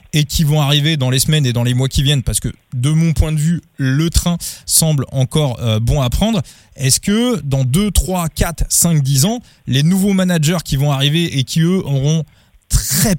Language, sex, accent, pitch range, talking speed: French, male, French, 130-160 Hz, 215 wpm